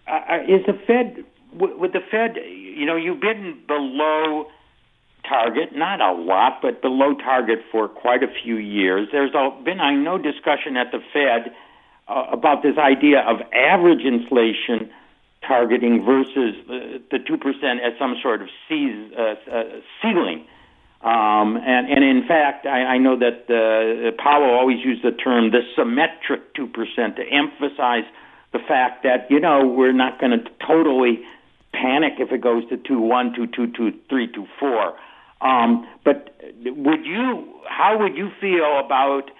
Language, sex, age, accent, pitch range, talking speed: English, male, 60-79, American, 120-155 Hz, 150 wpm